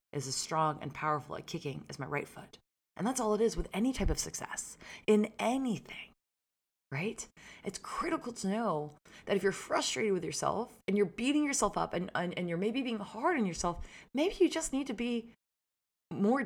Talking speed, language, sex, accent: 200 wpm, English, female, American